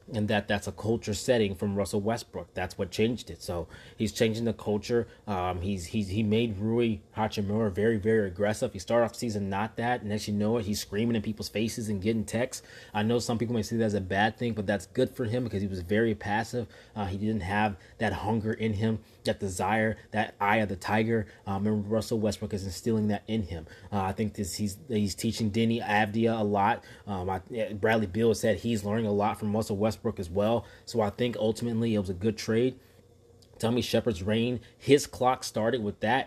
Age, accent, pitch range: 20-39, American, 105-115 Hz